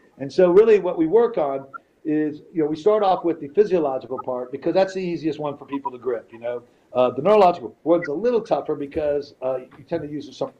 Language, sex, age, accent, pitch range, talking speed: English, male, 50-69, American, 135-160 Hz, 240 wpm